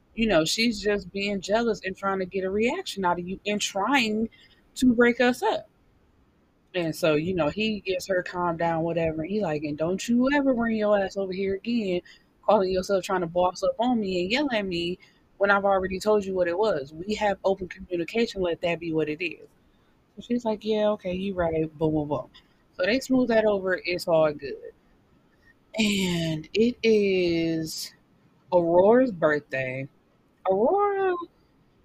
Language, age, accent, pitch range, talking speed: English, 20-39, American, 160-215 Hz, 185 wpm